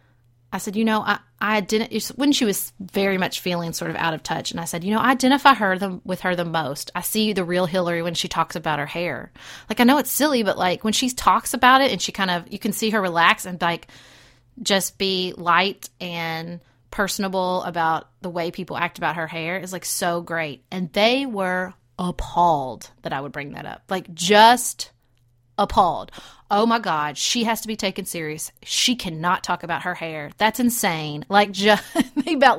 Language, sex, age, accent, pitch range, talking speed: English, female, 30-49, American, 165-215 Hz, 210 wpm